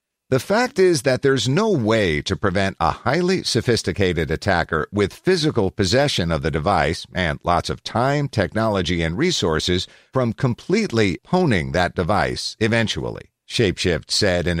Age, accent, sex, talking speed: 50-69, American, male, 145 wpm